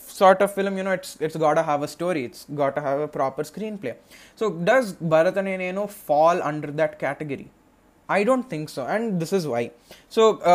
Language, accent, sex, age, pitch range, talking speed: Telugu, native, male, 20-39, 155-190 Hz, 205 wpm